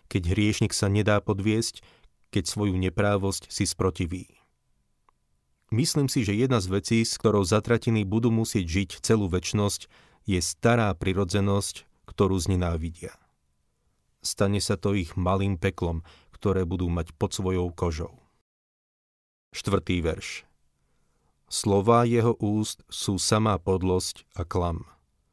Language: Slovak